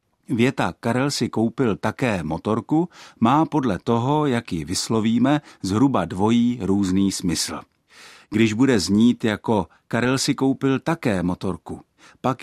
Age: 50-69